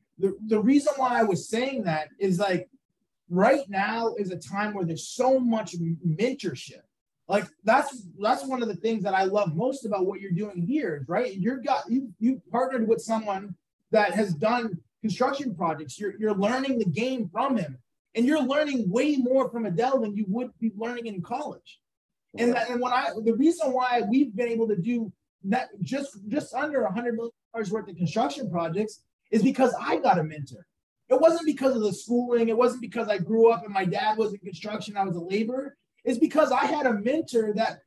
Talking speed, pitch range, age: 205 wpm, 195-255 Hz, 30-49